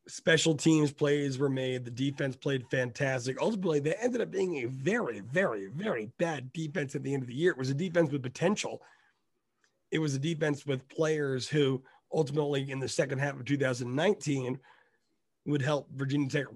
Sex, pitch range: male, 130-160 Hz